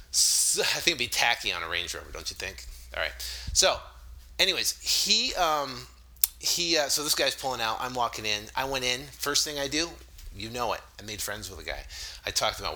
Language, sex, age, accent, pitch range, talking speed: English, male, 30-49, American, 105-165 Hz, 225 wpm